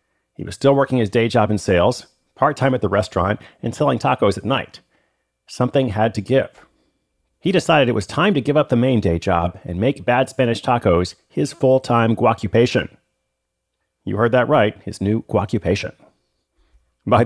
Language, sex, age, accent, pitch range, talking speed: English, male, 40-59, American, 105-140 Hz, 175 wpm